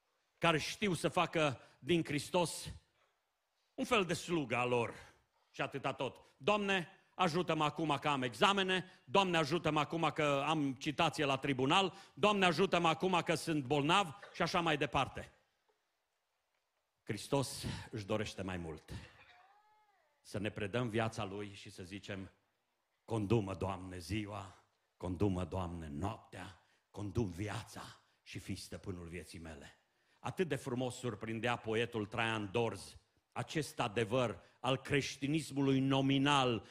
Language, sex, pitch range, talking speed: Romanian, male, 115-160 Hz, 125 wpm